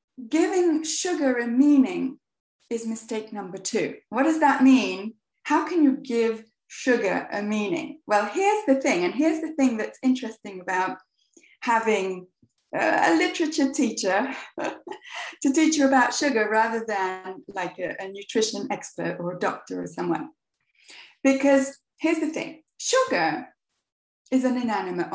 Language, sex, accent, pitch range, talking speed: English, female, British, 215-300 Hz, 140 wpm